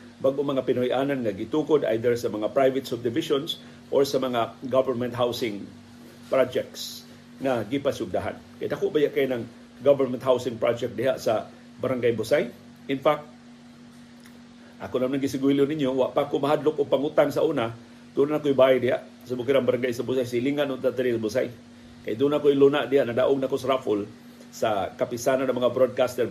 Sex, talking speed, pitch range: male, 160 wpm, 120-130 Hz